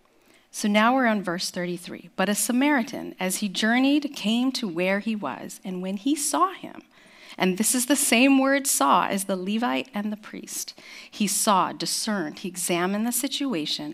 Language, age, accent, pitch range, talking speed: English, 40-59, American, 185-255 Hz, 180 wpm